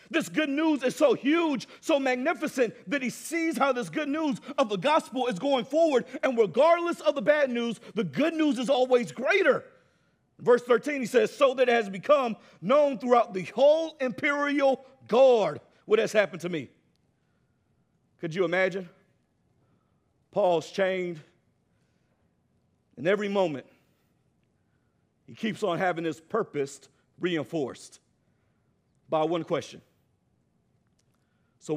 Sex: male